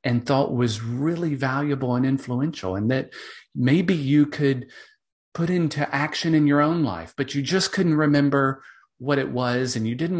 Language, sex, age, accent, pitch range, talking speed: English, male, 40-59, American, 115-155 Hz, 175 wpm